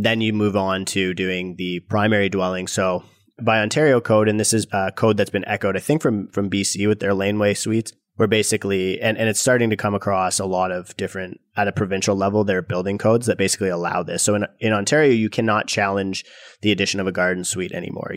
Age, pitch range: 30-49, 95-110 Hz